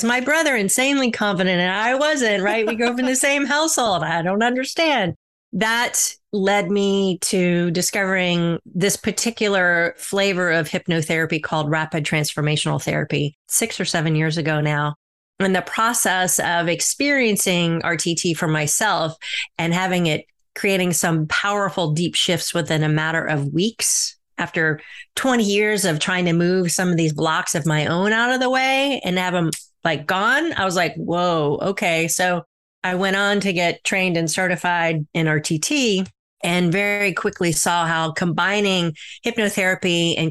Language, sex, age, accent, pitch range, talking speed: English, female, 30-49, American, 165-205 Hz, 160 wpm